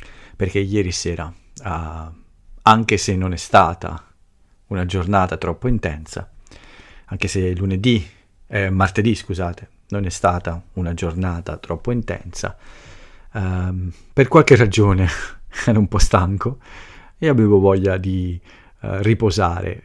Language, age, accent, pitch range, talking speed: Italian, 40-59, native, 90-110 Hz, 110 wpm